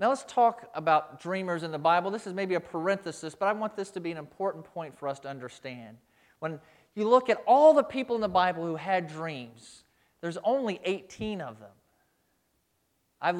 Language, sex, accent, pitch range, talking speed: English, male, American, 135-185 Hz, 200 wpm